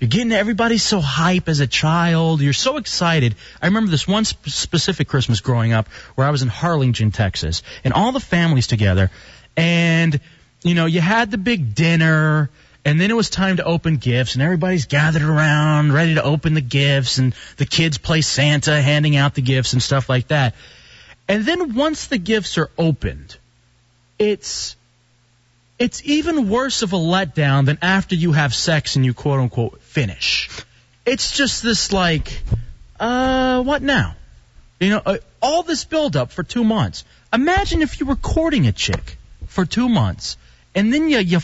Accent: American